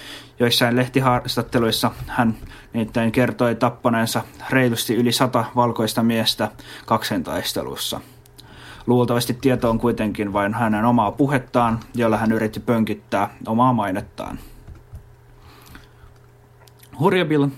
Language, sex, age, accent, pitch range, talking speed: Finnish, male, 20-39, native, 115-130 Hz, 90 wpm